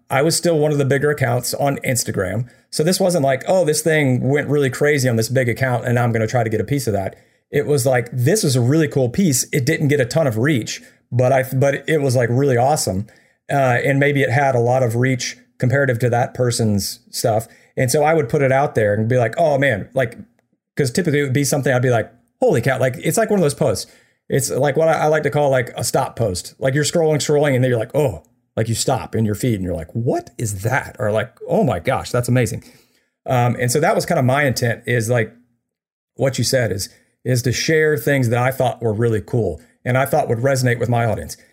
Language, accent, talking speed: English, American, 255 wpm